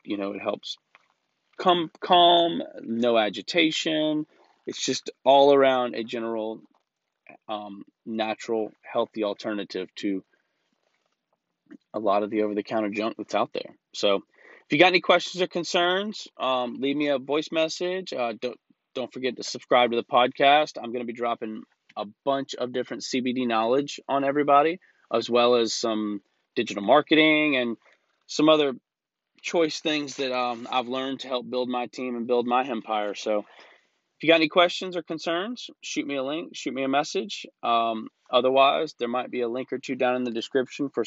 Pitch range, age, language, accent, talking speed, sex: 115-155 Hz, 30-49, English, American, 170 wpm, male